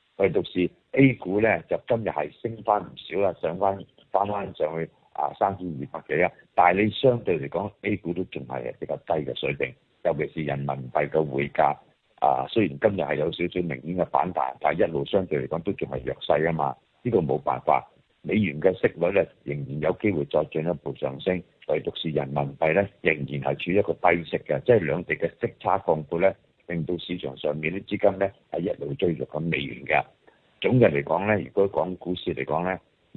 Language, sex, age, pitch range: Chinese, male, 60-79, 75-95 Hz